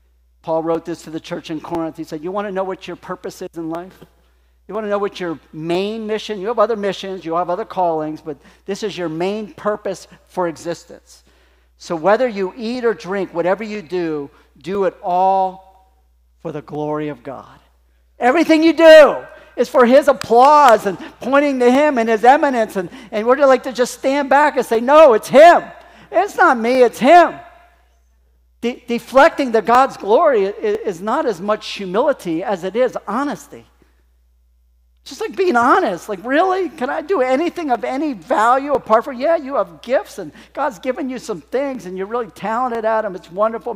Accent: American